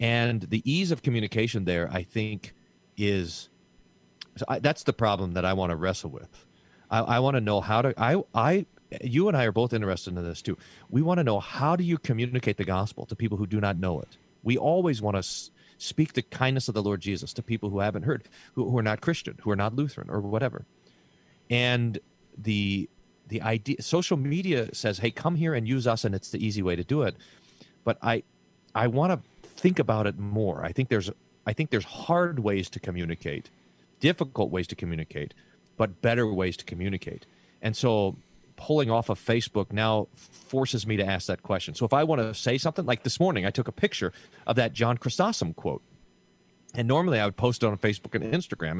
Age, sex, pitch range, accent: 40-59, male, 100-140 Hz, American